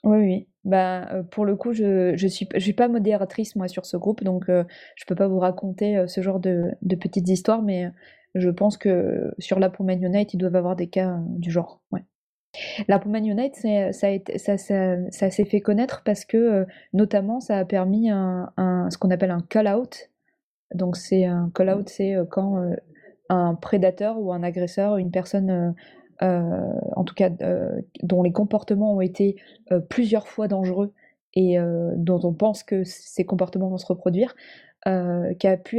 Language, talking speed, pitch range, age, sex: French, 210 wpm, 180-210 Hz, 20-39, female